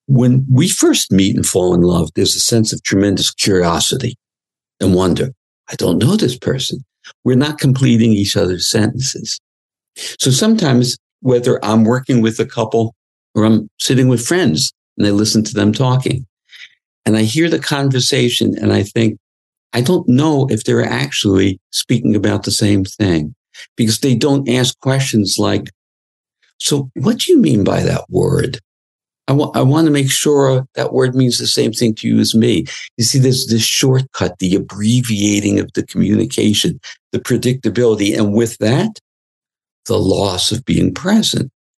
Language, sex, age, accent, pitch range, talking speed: English, male, 60-79, American, 105-135 Hz, 165 wpm